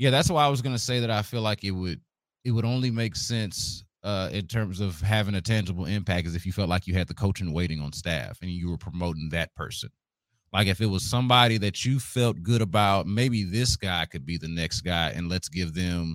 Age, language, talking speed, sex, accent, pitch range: 30-49, English, 250 wpm, male, American, 90-110 Hz